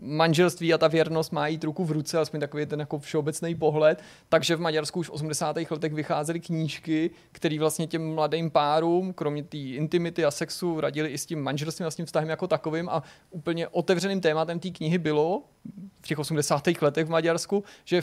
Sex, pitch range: male, 155-175 Hz